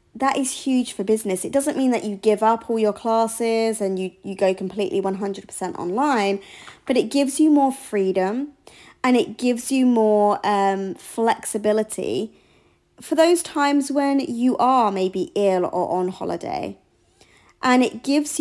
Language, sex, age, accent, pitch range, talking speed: English, female, 20-39, British, 190-245 Hz, 160 wpm